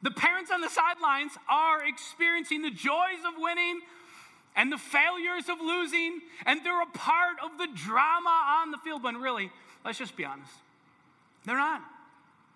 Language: English